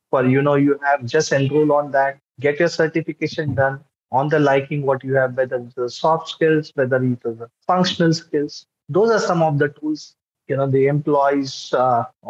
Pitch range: 130-160 Hz